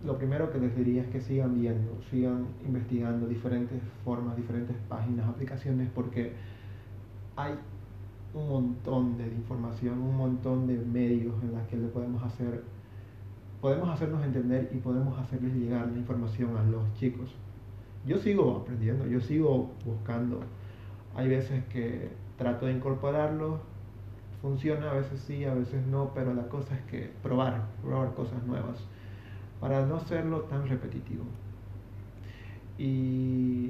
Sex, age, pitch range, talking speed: male, 30-49, 105-130 Hz, 140 wpm